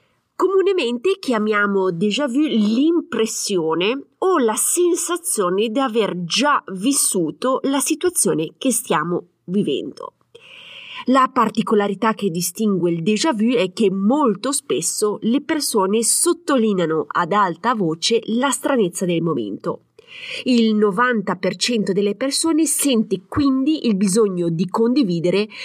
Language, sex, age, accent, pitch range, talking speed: Italian, female, 30-49, native, 190-285 Hz, 110 wpm